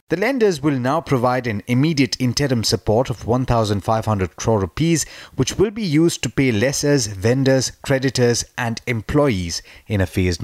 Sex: male